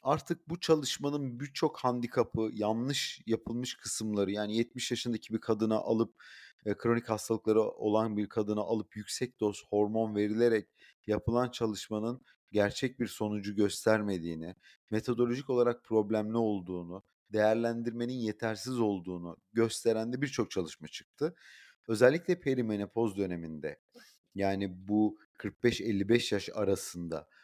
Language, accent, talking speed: Turkish, native, 110 wpm